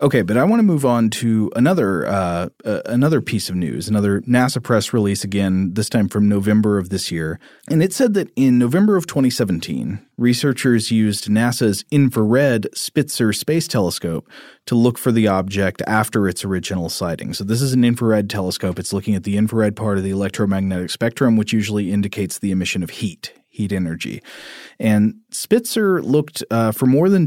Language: English